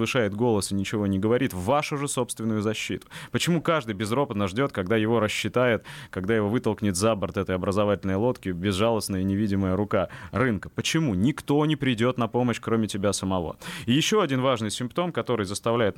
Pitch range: 95-125 Hz